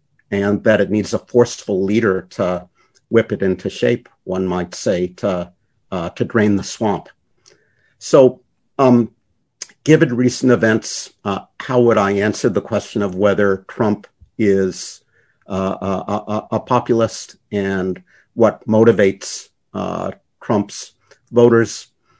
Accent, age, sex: American, 50-69, male